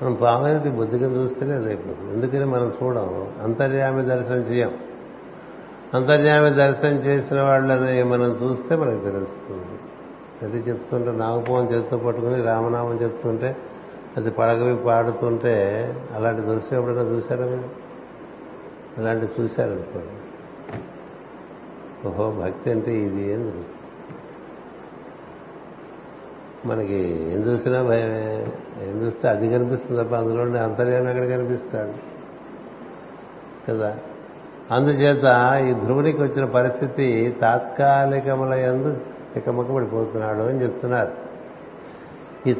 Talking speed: 95 wpm